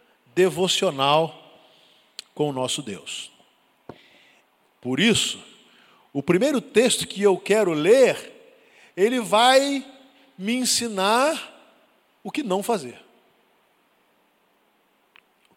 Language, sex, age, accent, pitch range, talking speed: Portuguese, male, 50-69, Brazilian, 185-265 Hz, 90 wpm